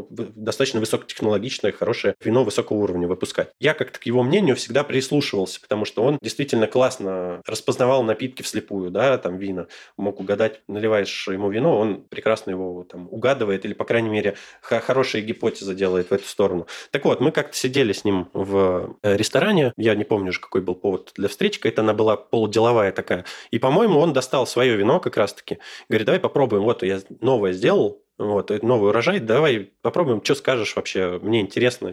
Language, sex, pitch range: Russian, male, 100-130 Hz